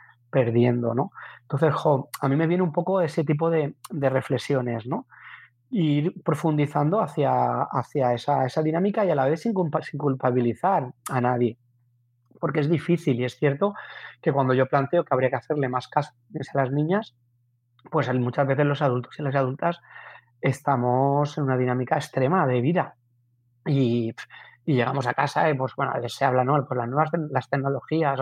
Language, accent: Spanish, Spanish